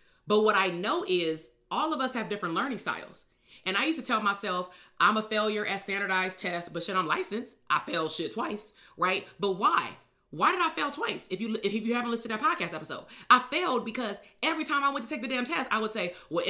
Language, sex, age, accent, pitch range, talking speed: English, female, 30-49, American, 200-260 Hz, 240 wpm